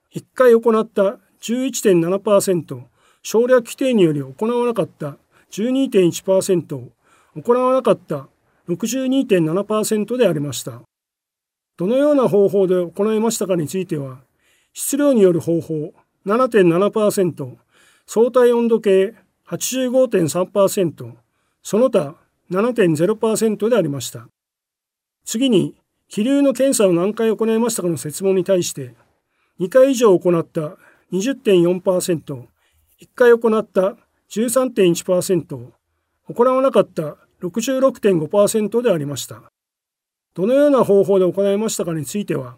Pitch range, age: 165-230 Hz, 40-59